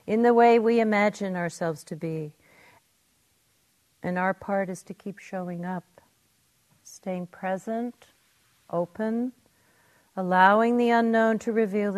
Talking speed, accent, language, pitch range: 120 wpm, American, English, 170-210 Hz